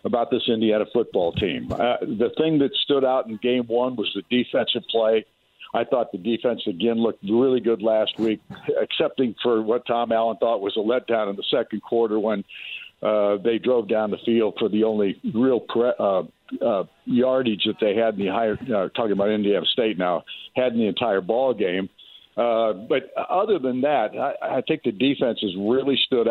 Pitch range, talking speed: 115-135 Hz, 195 wpm